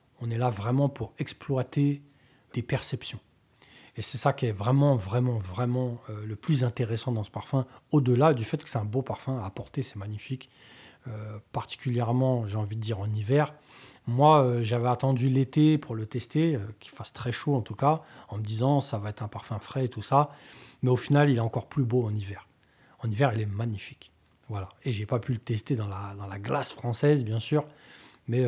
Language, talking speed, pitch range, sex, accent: French, 215 wpm, 115-140 Hz, male, French